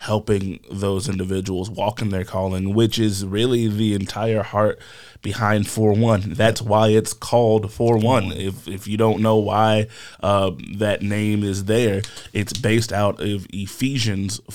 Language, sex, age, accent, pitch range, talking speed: English, male, 20-39, American, 100-110 Hz, 150 wpm